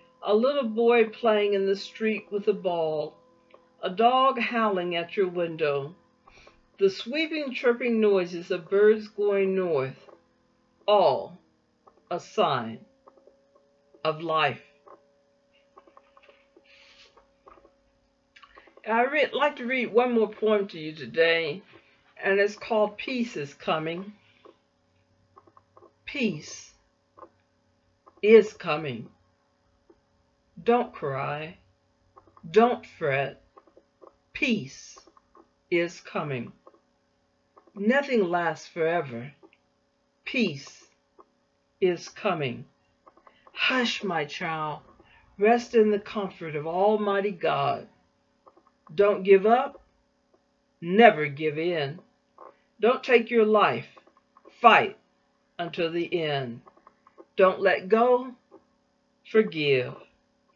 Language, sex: English, female